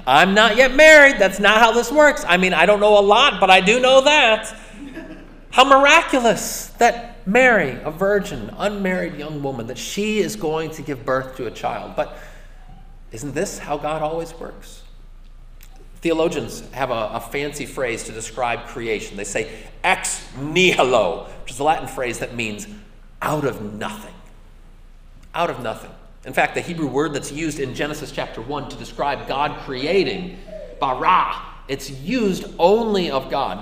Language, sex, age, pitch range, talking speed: English, male, 30-49, 145-205 Hz, 170 wpm